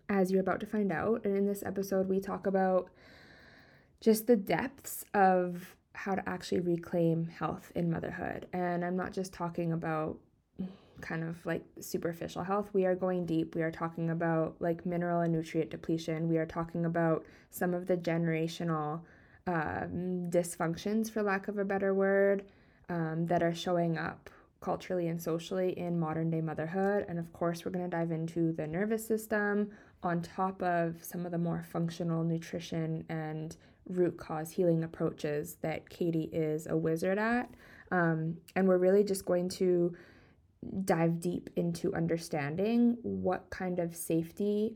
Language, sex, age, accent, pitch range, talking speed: English, female, 20-39, American, 165-190 Hz, 160 wpm